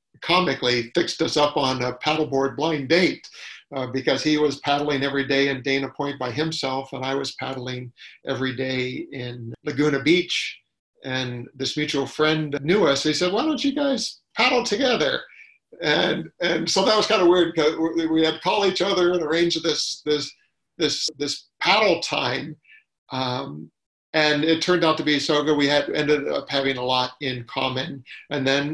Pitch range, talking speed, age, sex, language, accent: 135-160 Hz, 185 wpm, 50-69, male, English, American